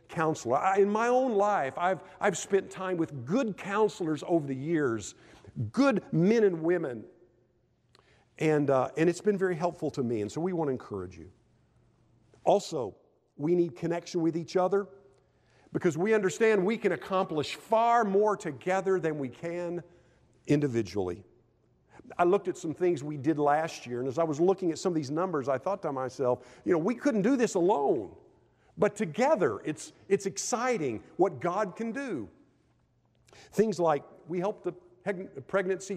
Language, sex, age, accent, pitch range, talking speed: English, male, 50-69, American, 160-210 Hz, 170 wpm